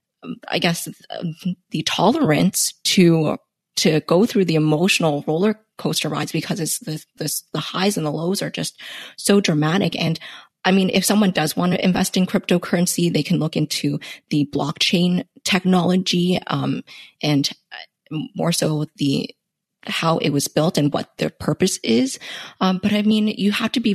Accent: American